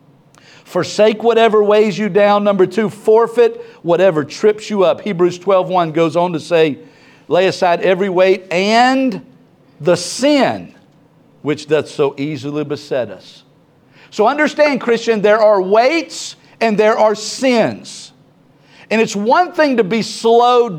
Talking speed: 140 wpm